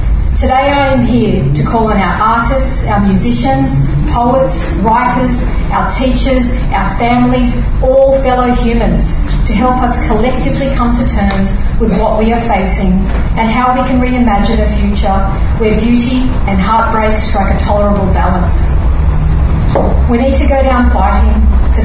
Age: 40-59